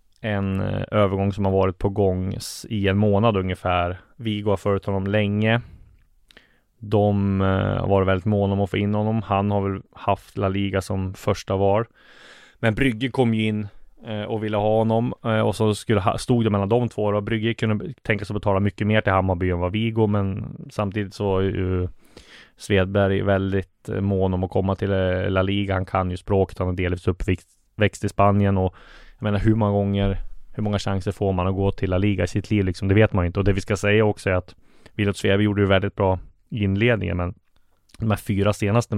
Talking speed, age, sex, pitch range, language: 205 wpm, 20-39, male, 95-110 Hz, Swedish